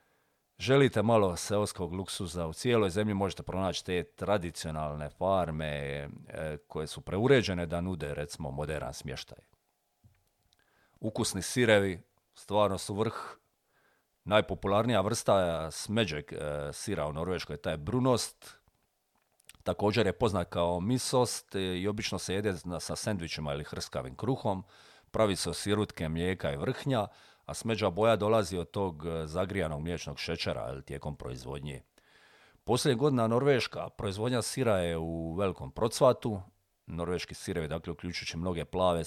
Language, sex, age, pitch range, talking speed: Croatian, male, 40-59, 80-105 Hz, 120 wpm